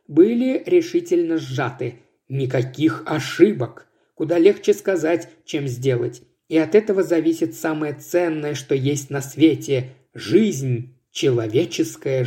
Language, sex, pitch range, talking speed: Russian, male, 140-225 Hz, 110 wpm